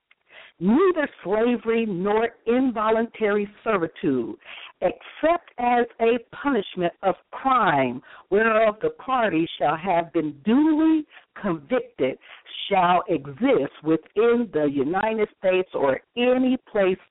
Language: English